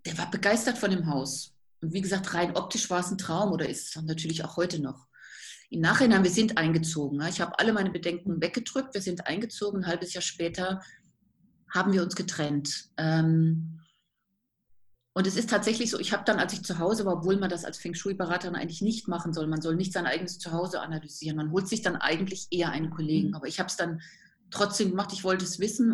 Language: German